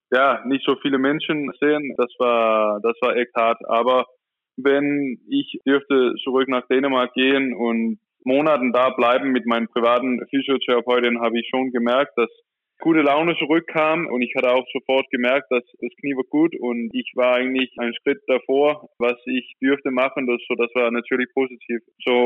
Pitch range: 120-135 Hz